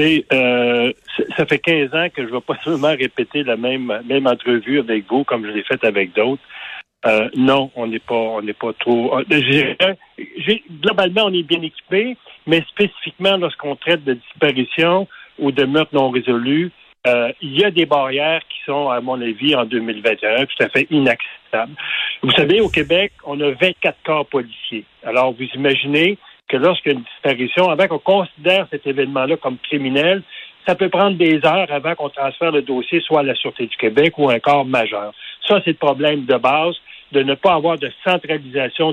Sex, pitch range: male, 130-170 Hz